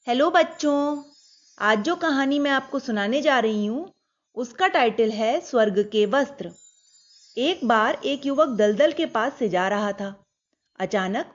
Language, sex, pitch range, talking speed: Hindi, female, 205-300 Hz, 155 wpm